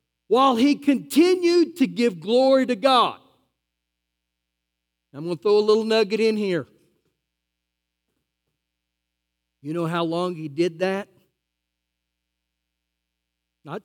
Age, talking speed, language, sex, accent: 50-69, 110 wpm, English, male, American